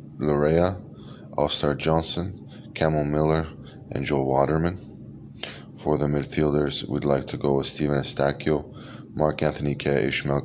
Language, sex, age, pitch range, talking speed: Hebrew, male, 20-39, 70-80 Hz, 120 wpm